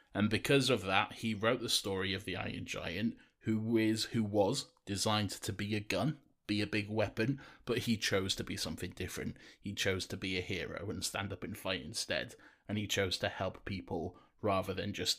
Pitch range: 100-130 Hz